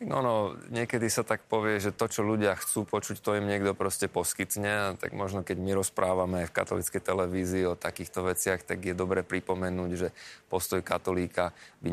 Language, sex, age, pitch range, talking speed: Slovak, male, 20-39, 90-100 Hz, 180 wpm